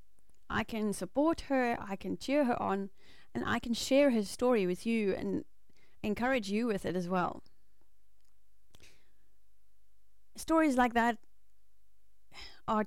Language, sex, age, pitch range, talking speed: English, female, 30-49, 180-220 Hz, 130 wpm